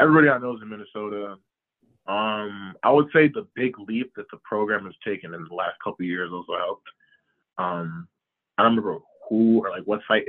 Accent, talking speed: American, 200 wpm